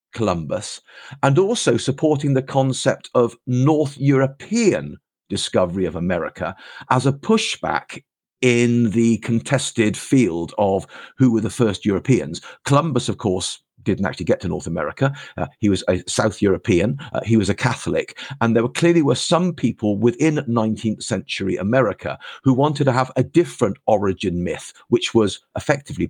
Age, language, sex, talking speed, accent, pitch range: 50-69, English, male, 155 wpm, British, 105-135 Hz